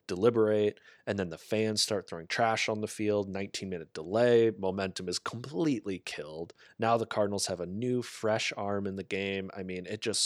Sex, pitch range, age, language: male, 95-120 Hz, 20-39, English